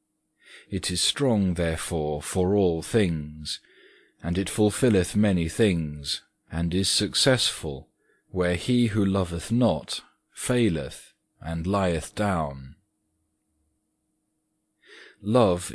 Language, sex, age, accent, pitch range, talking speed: English, male, 40-59, British, 85-105 Hz, 95 wpm